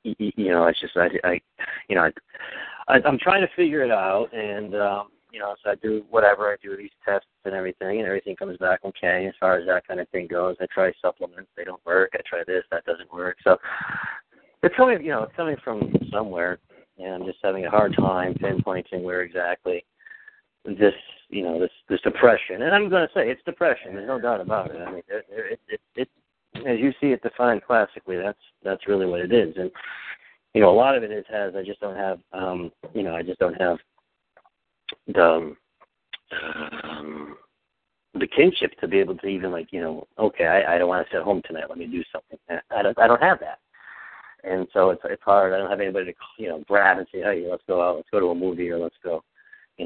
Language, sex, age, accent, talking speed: English, male, 40-59, American, 225 wpm